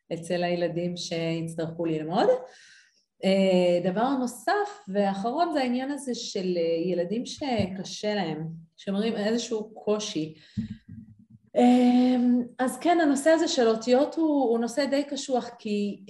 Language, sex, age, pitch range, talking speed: Hebrew, female, 30-49, 190-270 Hz, 110 wpm